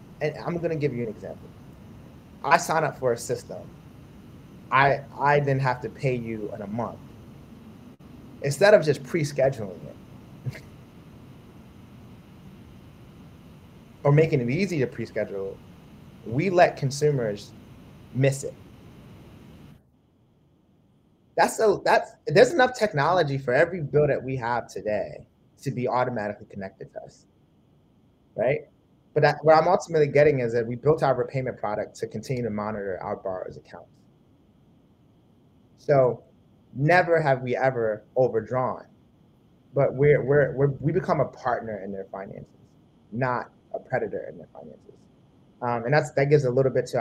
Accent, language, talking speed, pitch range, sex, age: American, English, 140 wpm, 120-150 Hz, male, 30-49